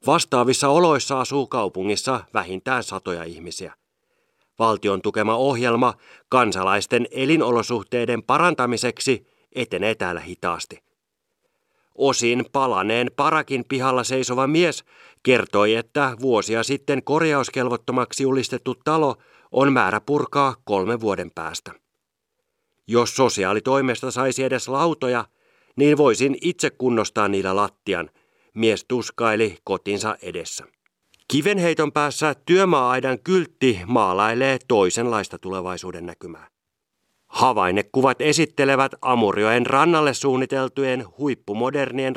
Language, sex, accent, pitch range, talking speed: Finnish, male, native, 110-140 Hz, 90 wpm